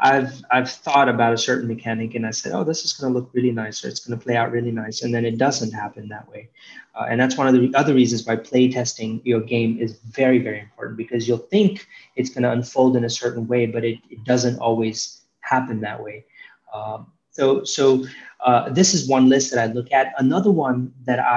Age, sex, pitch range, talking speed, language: 20-39, male, 115-130 Hz, 235 wpm, English